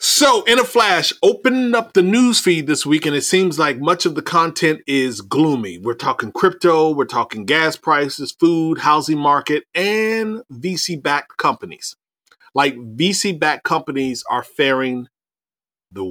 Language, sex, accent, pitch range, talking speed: English, male, American, 125-165 Hz, 150 wpm